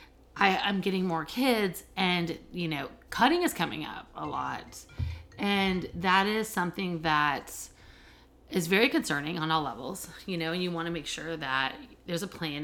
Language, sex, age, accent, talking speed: English, female, 30-49, American, 175 wpm